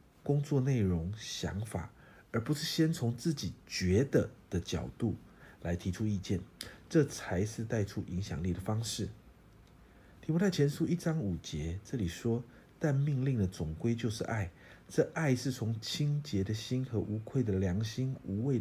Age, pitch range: 50-69, 95-130 Hz